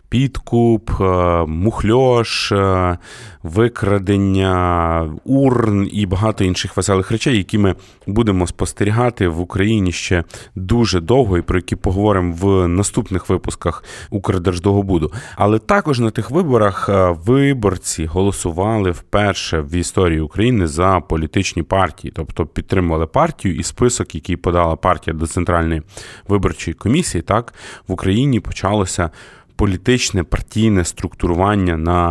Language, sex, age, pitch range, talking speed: Ukrainian, male, 30-49, 90-115 Hz, 110 wpm